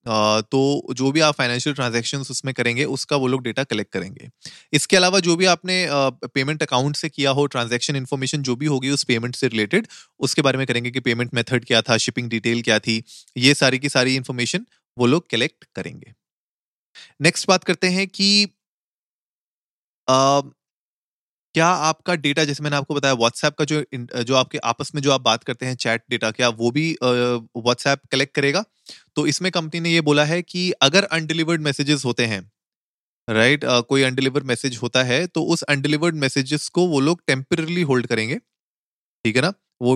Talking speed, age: 185 wpm, 30-49